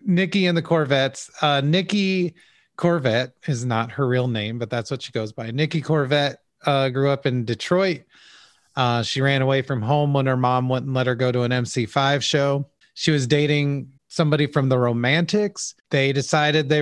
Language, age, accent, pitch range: English, 30-49, American, 135-165 Hz